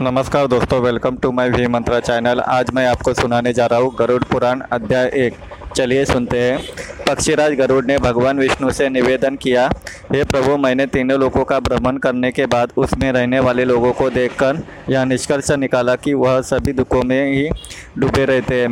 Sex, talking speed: male, 185 wpm